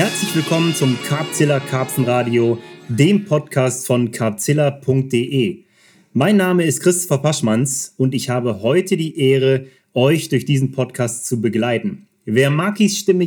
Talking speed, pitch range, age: 130 wpm, 120-170 Hz, 30-49